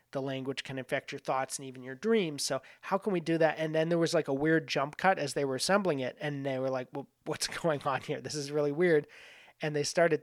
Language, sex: English, male